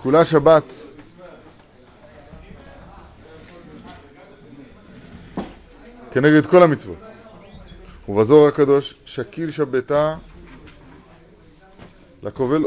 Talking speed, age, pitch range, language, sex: 45 wpm, 30-49, 115-145 Hz, Hebrew, male